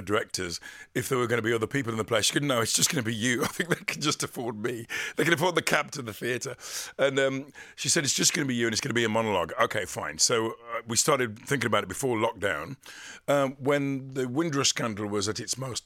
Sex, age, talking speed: male, 50-69, 275 wpm